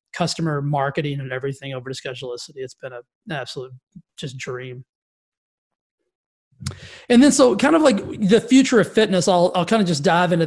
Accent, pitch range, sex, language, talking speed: American, 155-195 Hz, male, English, 170 wpm